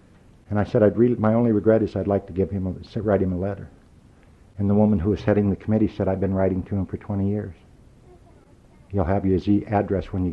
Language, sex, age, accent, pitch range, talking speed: English, male, 60-79, American, 90-105 Hz, 220 wpm